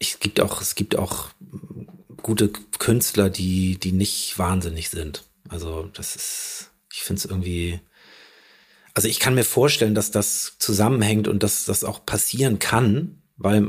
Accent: German